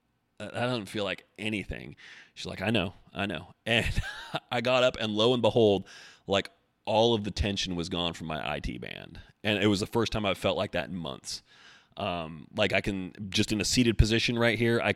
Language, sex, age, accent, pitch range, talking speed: English, male, 30-49, American, 105-135 Hz, 215 wpm